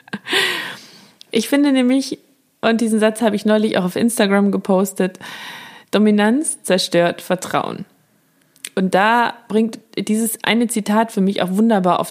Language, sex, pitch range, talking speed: German, female, 185-260 Hz, 135 wpm